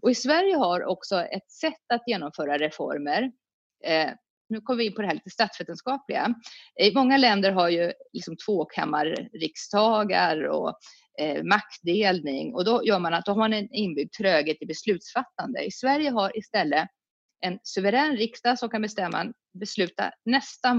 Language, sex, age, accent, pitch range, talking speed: English, female, 30-49, Swedish, 180-255 Hz, 160 wpm